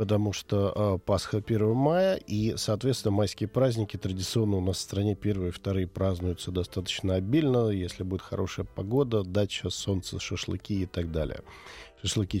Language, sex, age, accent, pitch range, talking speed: Russian, male, 40-59, native, 90-105 Hz, 155 wpm